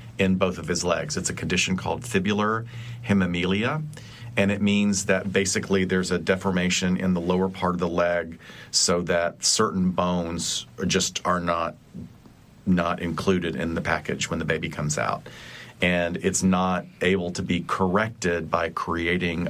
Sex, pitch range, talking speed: male, 85-95 Hz, 160 wpm